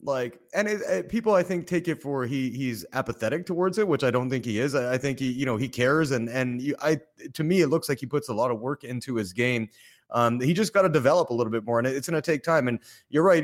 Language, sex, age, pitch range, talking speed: English, male, 30-49, 125-170 Hz, 295 wpm